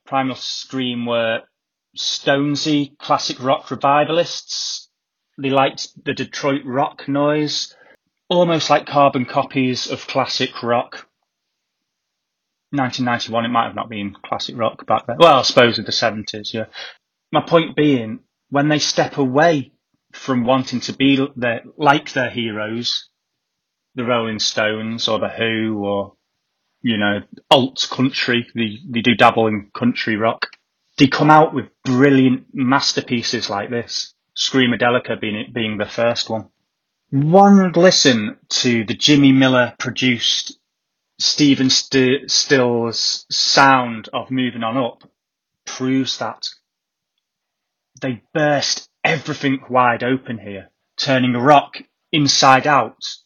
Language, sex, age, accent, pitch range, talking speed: English, male, 30-49, British, 115-145 Hz, 125 wpm